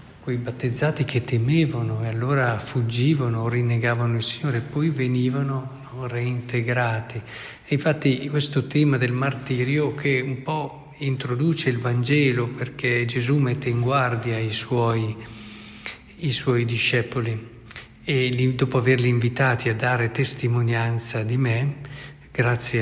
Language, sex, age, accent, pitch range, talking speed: Italian, male, 50-69, native, 115-135 Hz, 125 wpm